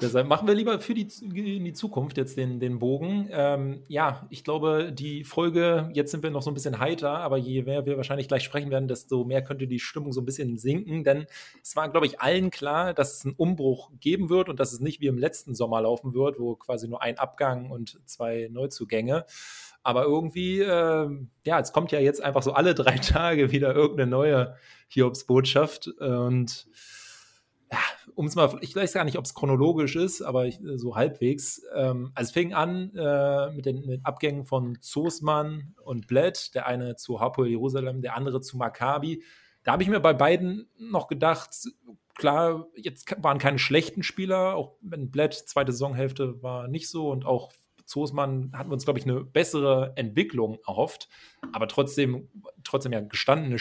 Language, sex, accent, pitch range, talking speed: German, male, German, 130-160 Hz, 185 wpm